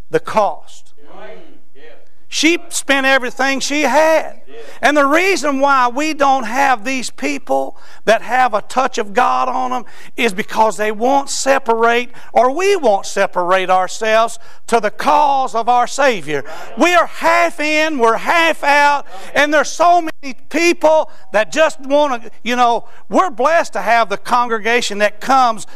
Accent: American